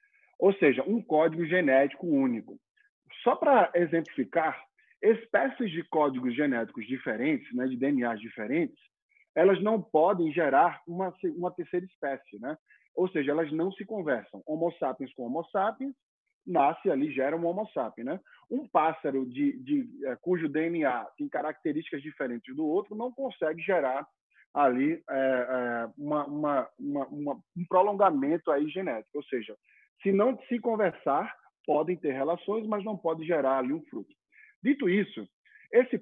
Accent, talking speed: Brazilian, 150 wpm